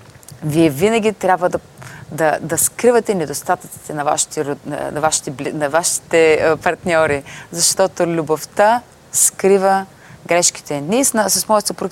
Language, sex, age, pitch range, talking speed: Bulgarian, female, 30-49, 150-185 Hz, 120 wpm